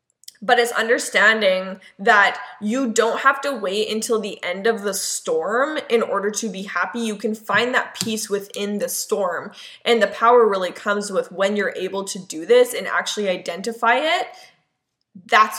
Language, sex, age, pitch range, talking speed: English, female, 10-29, 190-245 Hz, 175 wpm